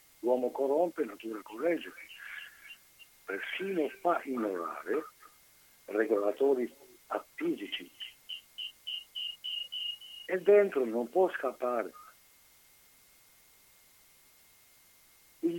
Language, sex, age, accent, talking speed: Italian, male, 60-79, native, 60 wpm